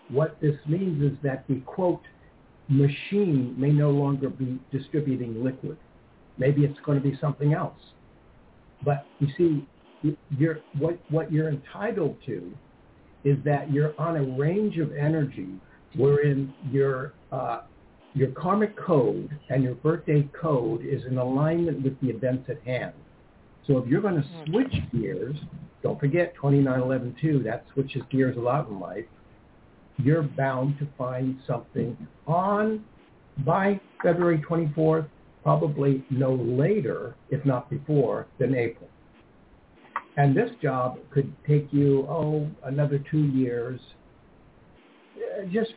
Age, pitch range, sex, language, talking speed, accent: 60-79, 130-155 Hz, male, English, 130 wpm, American